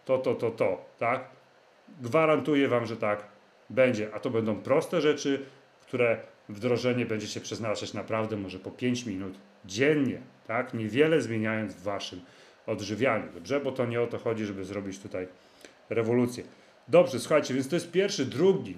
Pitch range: 115-145 Hz